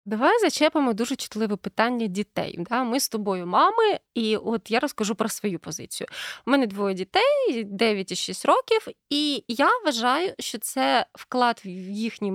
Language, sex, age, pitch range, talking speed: Ukrainian, female, 20-39, 205-295 Hz, 165 wpm